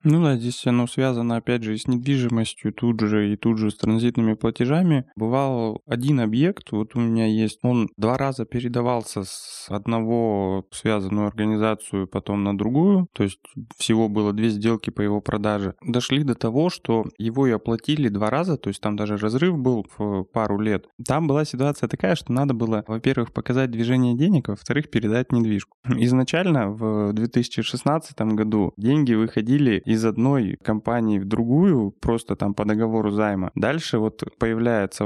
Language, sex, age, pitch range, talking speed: Russian, male, 20-39, 105-125 Hz, 165 wpm